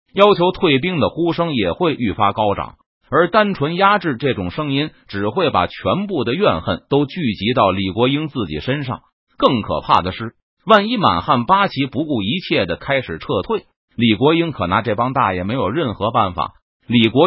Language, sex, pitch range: Chinese, male, 115-180 Hz